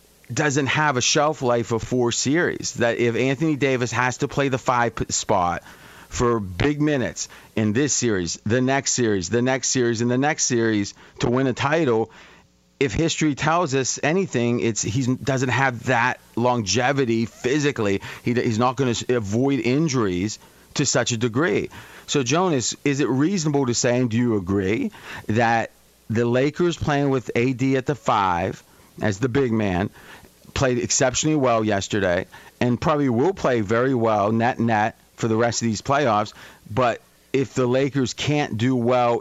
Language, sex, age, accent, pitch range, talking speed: English, male, 30-49, American, 110-135 Hz, 165 wpm